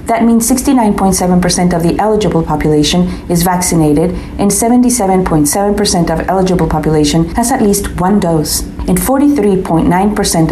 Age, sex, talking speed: 40-59, female, 120 wpm